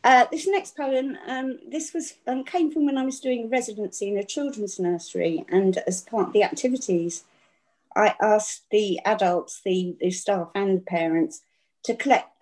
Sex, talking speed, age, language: female, 180 wpm, 50-69, English